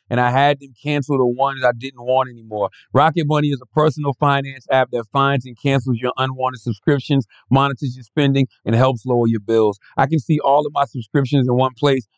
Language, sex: English, male